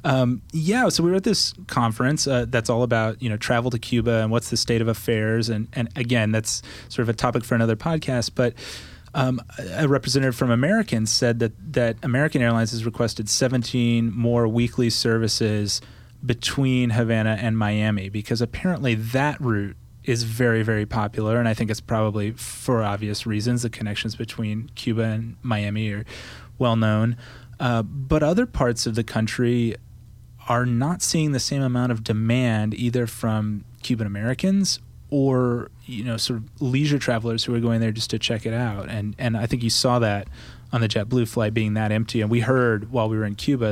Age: 30-49